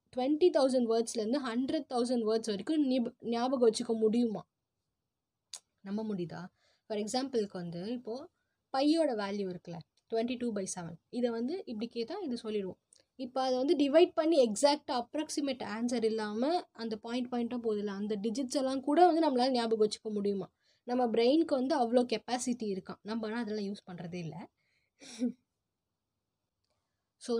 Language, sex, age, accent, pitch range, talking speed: Tamil, female, 20-39, native, 210-255 Hz, 140 wpm